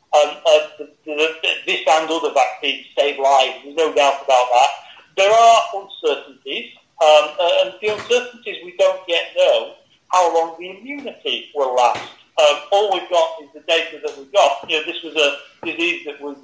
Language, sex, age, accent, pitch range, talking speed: English, male, 40-59, British, 150-200 Hz, 190 wpm